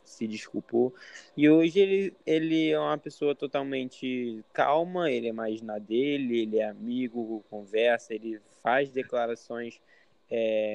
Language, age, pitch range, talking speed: Portuguese, 10-29, 115-135 Hz, 135 wpm